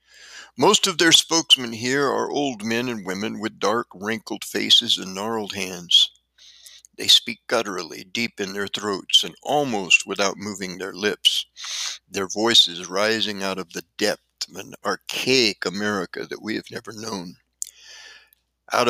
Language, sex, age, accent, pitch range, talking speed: English, male, 60-79, American, 105-135 Hz, 150 wpm